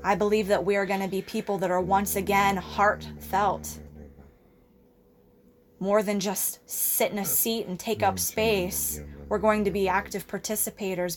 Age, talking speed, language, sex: 20-39, 165 wpm, English, female